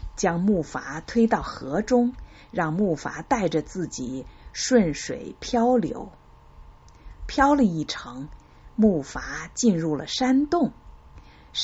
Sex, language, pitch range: female, Chinese, 145-225 Hz